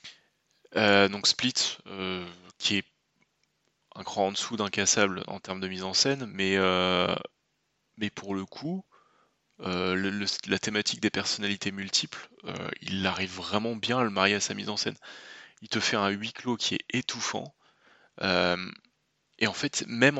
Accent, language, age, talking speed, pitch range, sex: French, French, 20-39, 175 wpm, 95-120 Hz, male